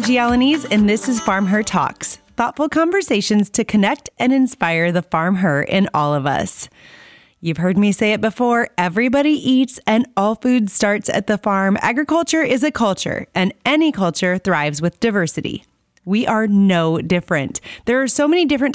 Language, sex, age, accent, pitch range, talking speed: English, female, 30-49, American, 185-250 Hz, 175 wpm